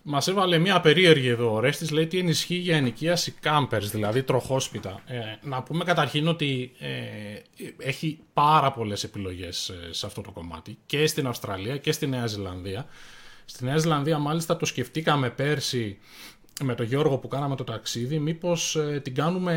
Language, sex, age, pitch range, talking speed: Greek, male, 20-39, 115-155 Hz, 170 wpm